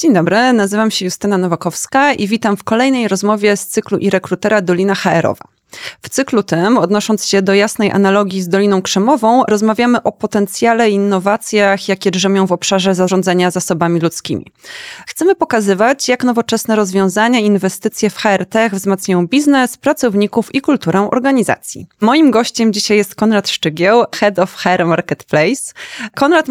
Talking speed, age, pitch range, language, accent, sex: 150 wpm, 20-39, 190-235 Hz, Polish, native, female